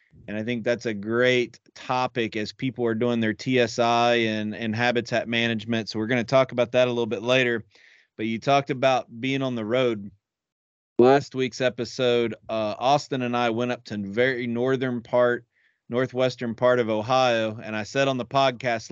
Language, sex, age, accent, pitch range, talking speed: English, male, 30-49, American, 115-130 Hz, 185 wpm